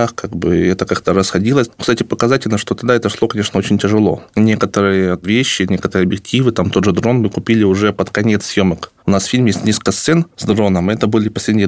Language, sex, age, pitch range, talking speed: Russian, male, 20-39, 95-110 Hz, 205 wpm